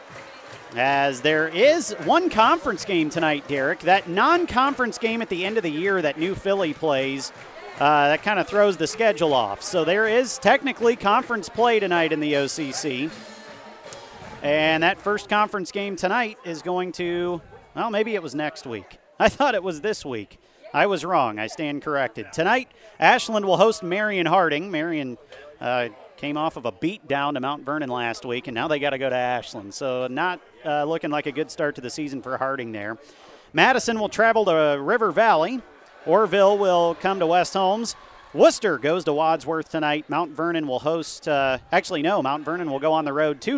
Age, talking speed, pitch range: 40-59, 190 wpm, 140-205 Hz